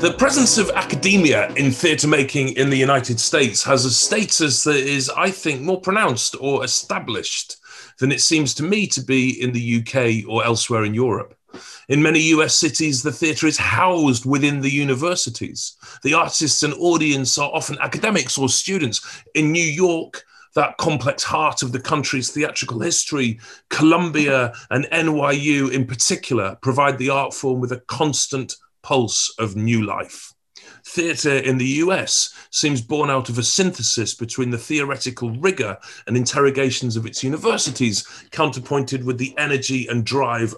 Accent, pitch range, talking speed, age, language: British, 125-155 Hz, 160 wpm, 40-59, English